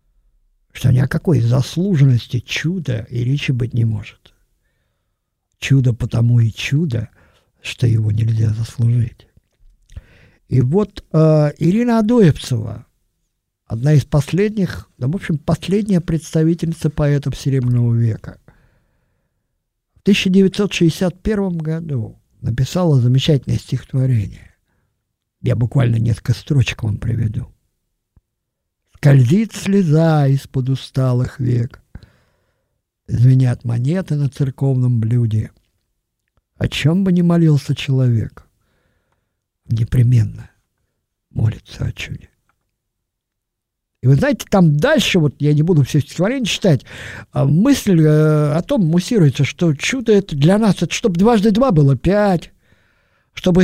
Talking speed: 105 wpm